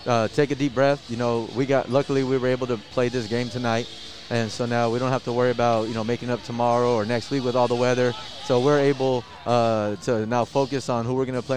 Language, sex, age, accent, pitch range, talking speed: English, male, 30-49, American, 115-135 Hz, 265 wpm